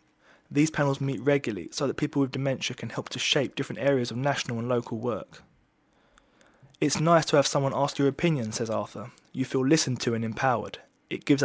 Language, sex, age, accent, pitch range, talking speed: English, male, 20-39, British, 120-140 Hz, 200 wpm